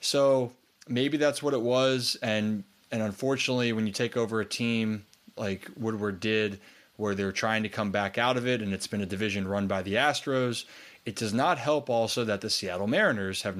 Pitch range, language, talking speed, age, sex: 105-125 Hz, English, 205 wpm, 20-39, male